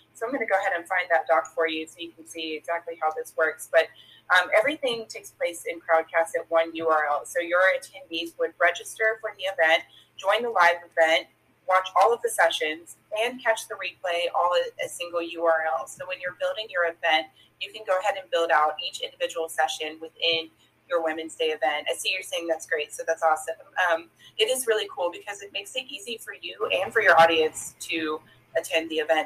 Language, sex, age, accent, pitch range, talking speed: English, female, 20-39, American, 160-185 Hz, 215 wpm